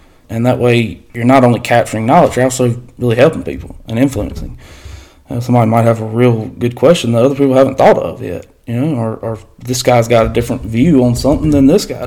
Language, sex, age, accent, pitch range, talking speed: English, male, 20-39, American, 90-125 Hz, 225 wpm